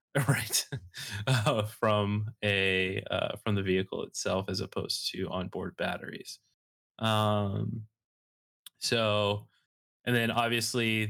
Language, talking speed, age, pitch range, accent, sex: English, 105 wpm, 20-39, 100-115 Hz, American, male